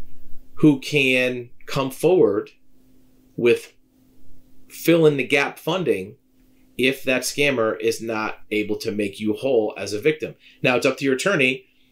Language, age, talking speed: English, 40-59, 145 wpm